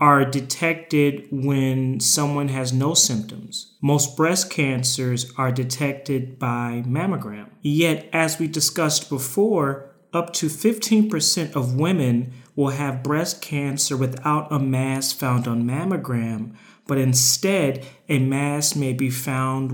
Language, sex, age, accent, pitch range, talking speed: English, male, 30-49, American, 130-160 Hz, 125 wpm